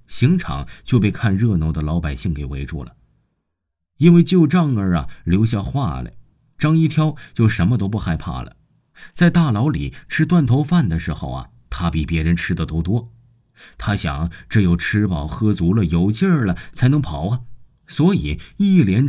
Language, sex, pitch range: Chinese, male, 85-125 Hz